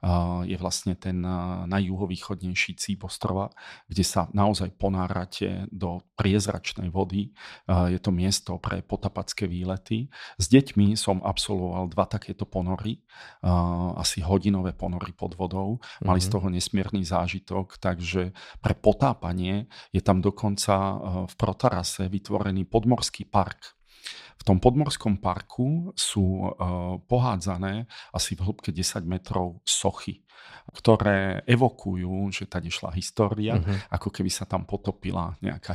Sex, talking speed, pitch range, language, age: male, 120 wpm, 90-100 Hz, Slovak, 40-59